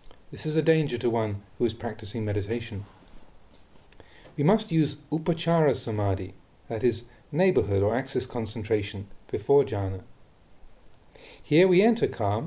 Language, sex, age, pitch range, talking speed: English, male, 40-59, 110-155 Hz, 130 wpm